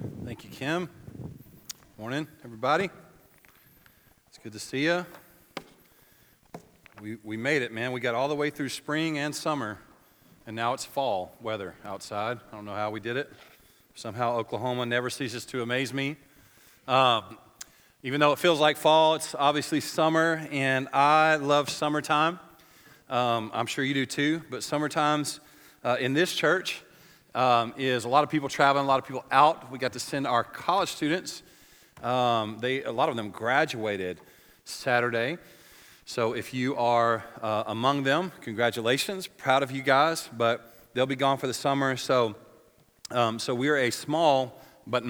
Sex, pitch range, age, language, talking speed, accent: male, 120-155 Hz, 40-59, English, 165 wpm, American